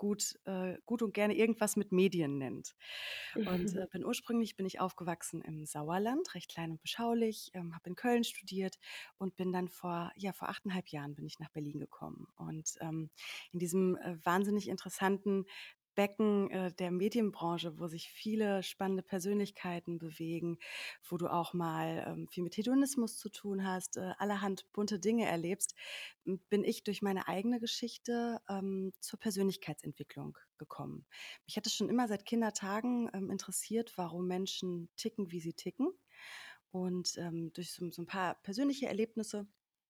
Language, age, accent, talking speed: English, 30-49, German, 145 wpm